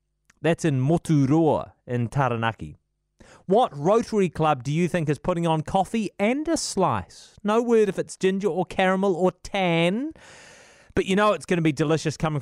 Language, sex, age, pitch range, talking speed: English, male, 30-49, 145-200 Hz, 175 wpm